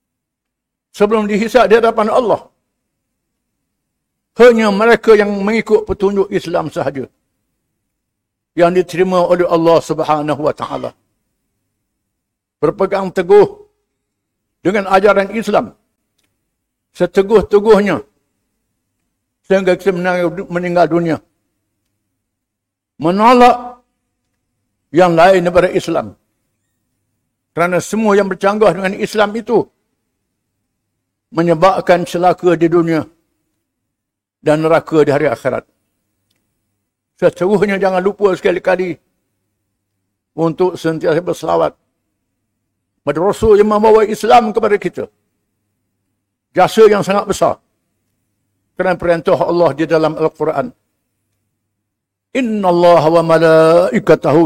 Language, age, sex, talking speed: English, 60-79, male, 85 wpm